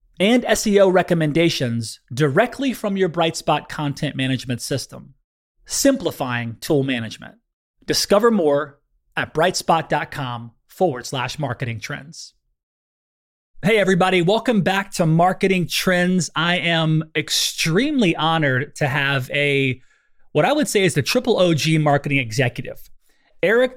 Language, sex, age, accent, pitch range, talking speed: English, male, 30-49, American, 135-180 Hz, 115 wpm